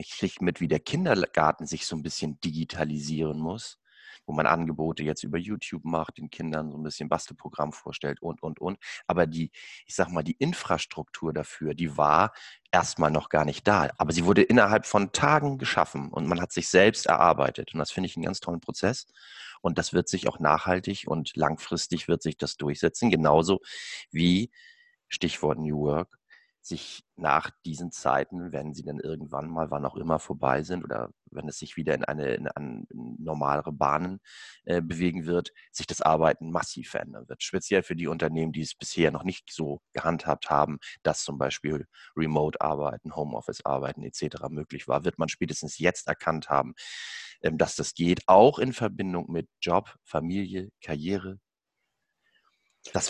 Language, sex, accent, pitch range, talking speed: German, male, German, 75-90 Hz, 175 wpm